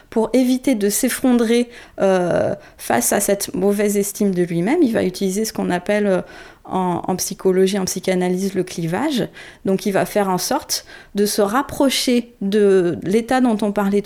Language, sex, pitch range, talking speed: French, female, 185-220 Hz, 165 wpm